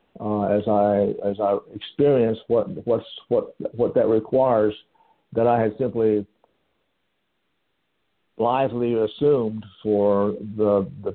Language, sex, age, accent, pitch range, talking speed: English, male, 60-79, American, 110-130 Hz, 115 wpm